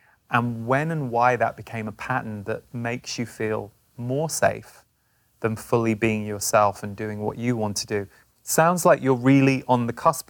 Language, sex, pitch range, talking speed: English, male, 115-140 Hz, 185 wpm